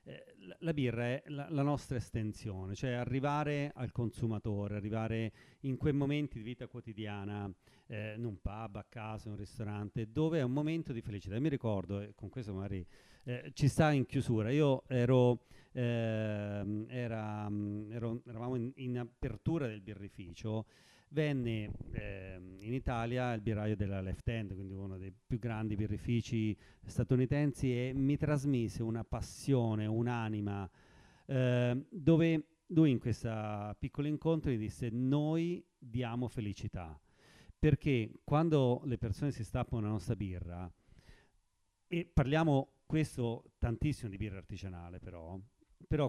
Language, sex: Italian, male